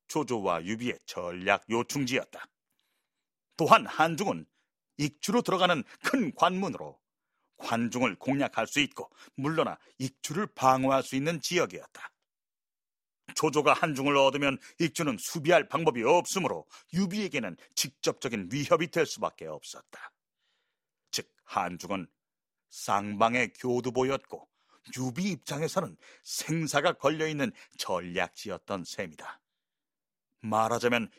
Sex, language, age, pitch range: male, Korean, 40-59, 130-195 Hz